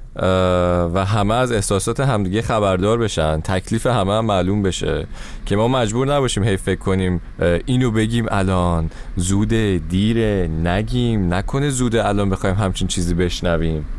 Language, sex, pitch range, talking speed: Persian, male, 95-130 Hz, 130 wpm